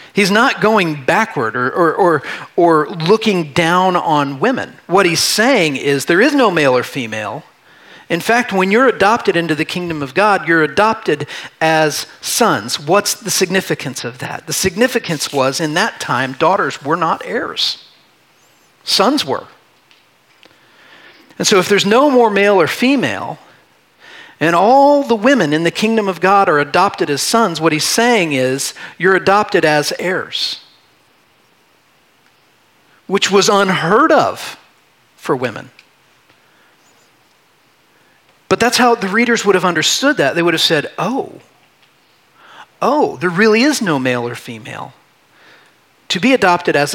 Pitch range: 150-215 Hz